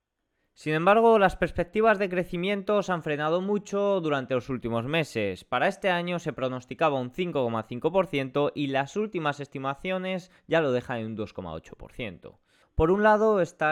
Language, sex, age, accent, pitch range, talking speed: Spanish, male, 20-39, Spanish, 125-180 Hz, 155 wpm